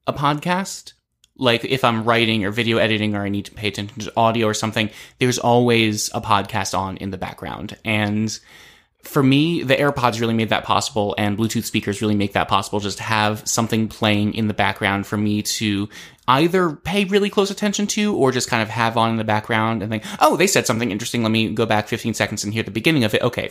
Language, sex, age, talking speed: English, male, 20-39, 225 wpm